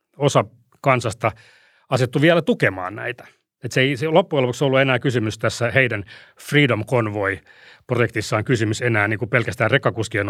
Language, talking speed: Finnish, 145 wpm